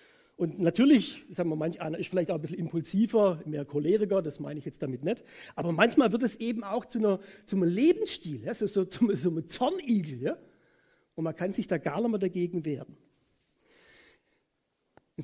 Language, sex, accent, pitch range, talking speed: German, male, German, 170-255 Hz, 195 wpm